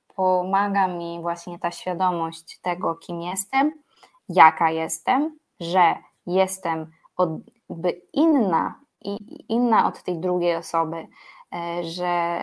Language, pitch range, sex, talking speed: Polish, 170-205 Hz, female, 100 wpm